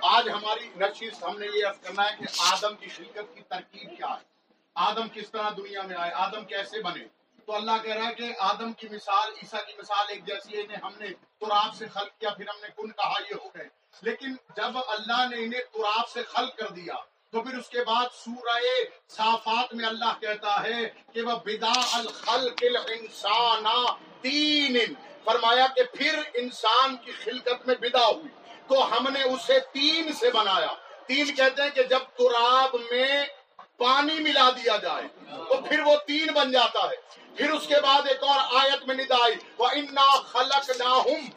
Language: Urdu